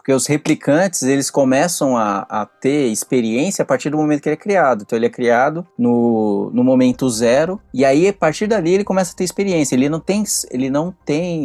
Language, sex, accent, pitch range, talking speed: Portuguese, male, Brazilian, 120-160 Hz, 205 wpm